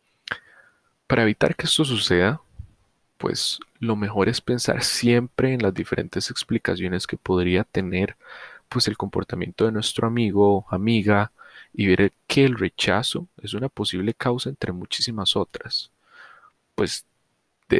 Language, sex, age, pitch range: Spanish, male, 30-49, 95-115 Hz